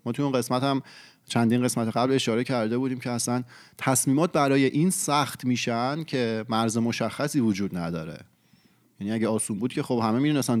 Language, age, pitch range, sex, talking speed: Persian, 30-49, 110-140 Hz, male, 180 wpm